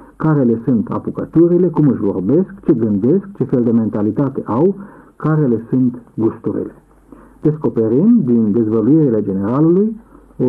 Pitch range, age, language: 115-155 Hz, 50-69, Romanian